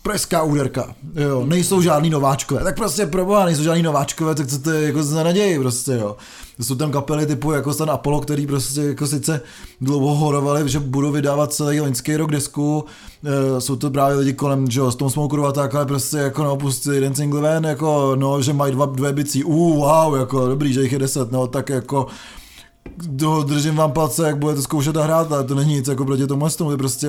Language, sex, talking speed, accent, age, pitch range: Czech, male, 205 wpm, native, 20-39, 130-150 Hz